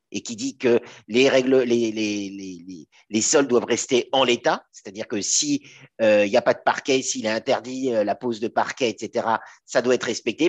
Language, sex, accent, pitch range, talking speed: French, male, French, 110-150 Hz, 225 wpm